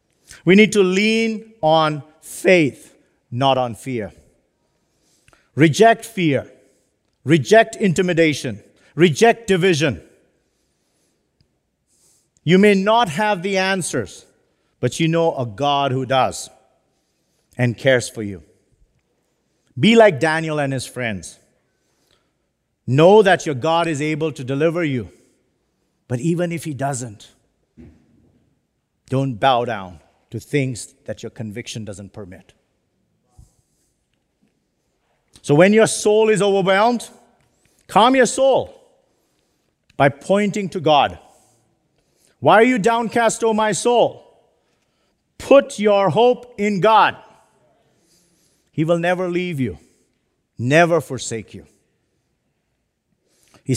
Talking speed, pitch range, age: 105 wpm, 125-195 Hz, 50-69